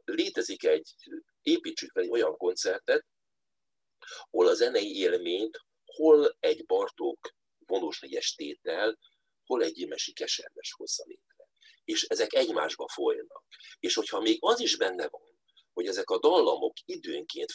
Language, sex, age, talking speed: Hungarian, male, 50-69, 125 wpm